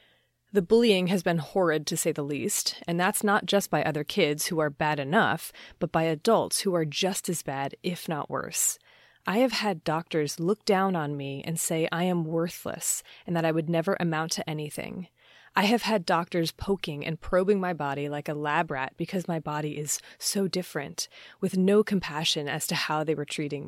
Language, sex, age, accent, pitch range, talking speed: English, female, 30-49, American, 160-195 Hz, 205 wpm